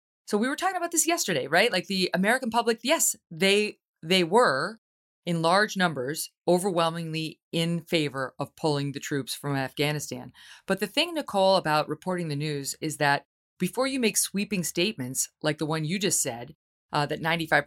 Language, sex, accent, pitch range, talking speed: English, female, American, 150-195 Hz, 175 wpm